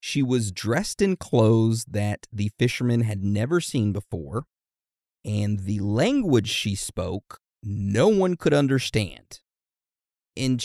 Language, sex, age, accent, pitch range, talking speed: English, male, 30-49, American, 95-130 Hz, 125 wpm